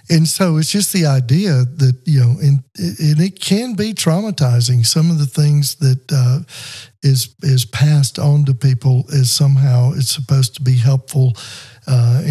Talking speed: 170 wpm